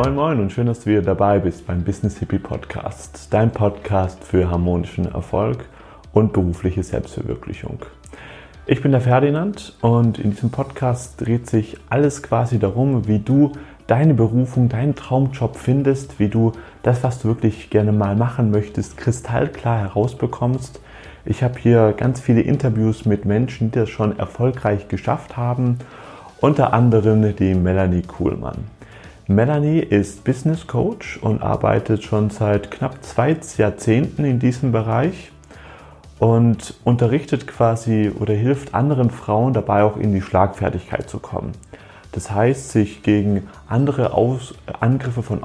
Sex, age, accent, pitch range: male, 30-49, German, 105-130 Hz